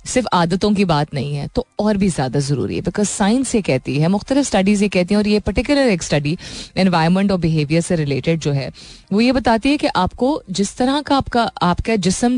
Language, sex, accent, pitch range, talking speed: Hindi, female, native, 165-220 Hz, 225 wpm